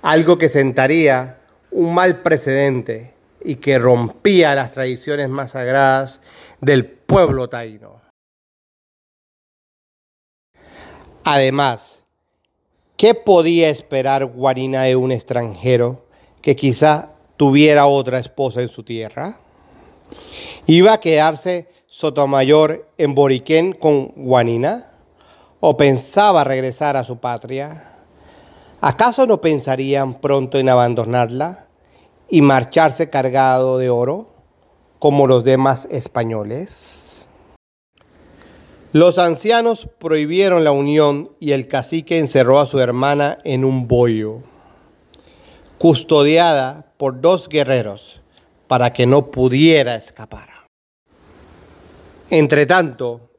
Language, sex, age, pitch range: Spanish, male, 40-59, 125-155 Hz